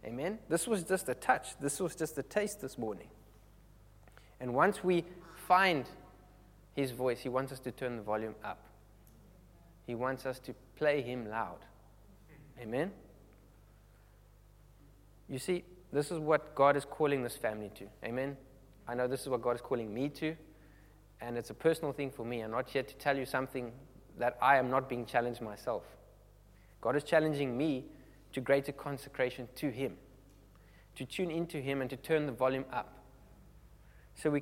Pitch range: 115-155 Hz